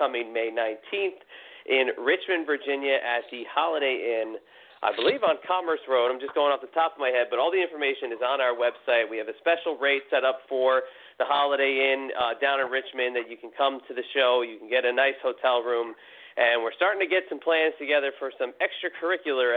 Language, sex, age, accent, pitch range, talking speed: English, male, 40-59, American, 125-160 Hz, 220 wpm